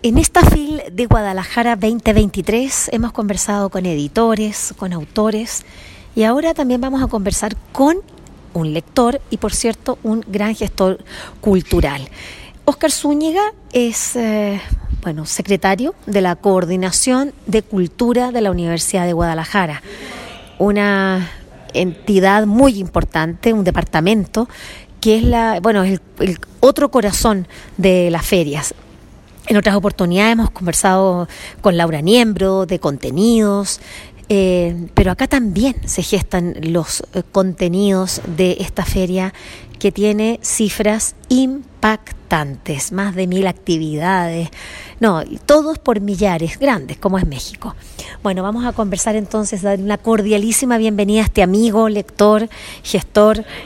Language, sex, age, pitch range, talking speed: Spanish, female, 30-49, 185-225 Hz, 125 wpm